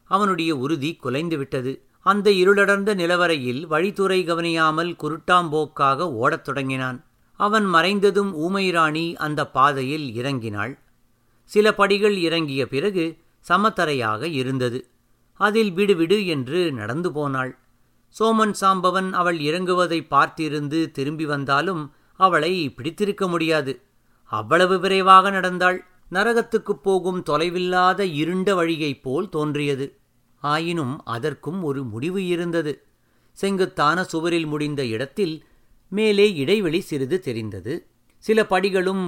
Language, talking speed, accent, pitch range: Tamil, 95 wpm, native, 140-190 Hz